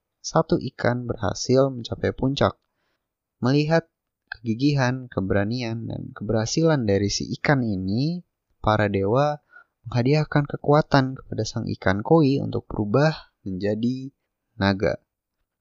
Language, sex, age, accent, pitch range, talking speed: Indonesian, male, 20-39, native, 100-130 Hz, 100 wpm